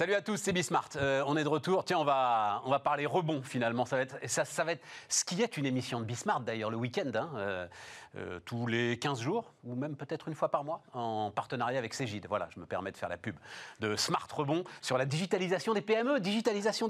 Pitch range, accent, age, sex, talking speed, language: 130-175 Hz, French, 40-59, male, 250 wpm, French